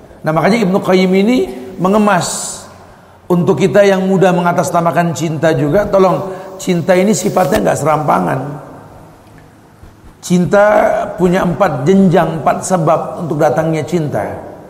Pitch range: 150-180 Hz